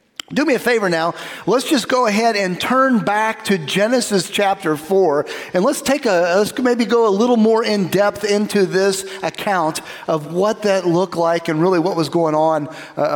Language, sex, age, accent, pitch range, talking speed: English, male, 40-59, American, 150-205 Hz, 195 wpm